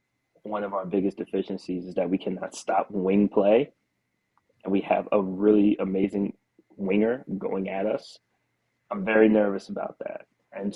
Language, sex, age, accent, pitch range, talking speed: English, male, 20-39, American, 95-110 Hz, 155 wpm